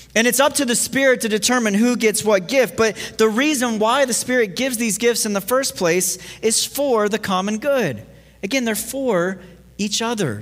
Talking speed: 200 wpm